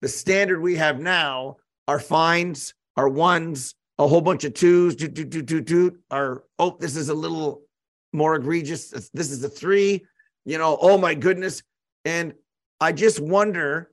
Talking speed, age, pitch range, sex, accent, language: 170 wpm, 50-69, 140-170 Hz, male, American, English